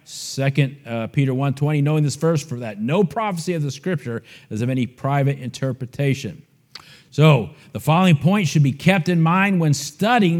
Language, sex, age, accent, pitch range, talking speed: English, male, 50-69, American, 130-165 Hz, 175 wpm